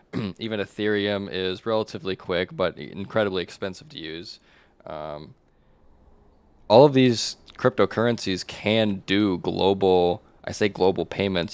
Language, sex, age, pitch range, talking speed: English, male, 20-39, 80-100 Hz, 115 wpm